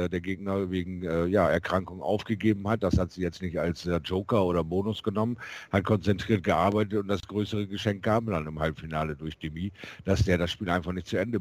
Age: 50-69